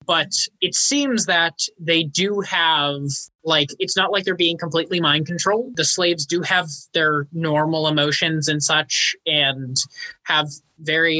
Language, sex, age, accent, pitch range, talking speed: English, male, 20-39, American, 140-175 Hz, 150 wpm